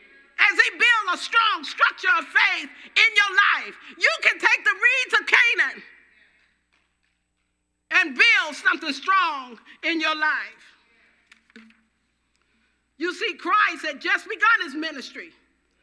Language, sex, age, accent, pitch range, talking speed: English, female, 50-69, American, 315-430 Hz, 125 wpm